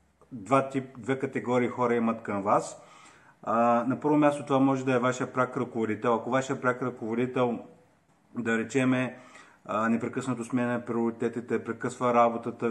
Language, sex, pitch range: Bulgarian, male, 115-130 Hz